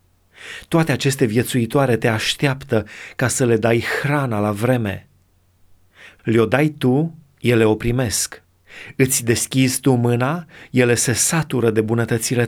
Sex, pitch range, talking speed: male, 105-150 Hz, 130 wpm